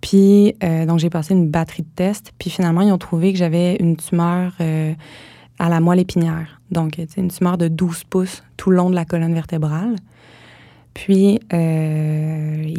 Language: French